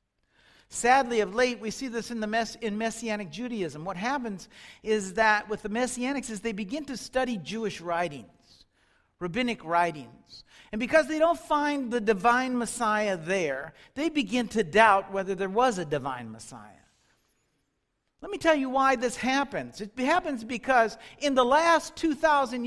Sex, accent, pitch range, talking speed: male, American, 195-270 Hz, 160 wpm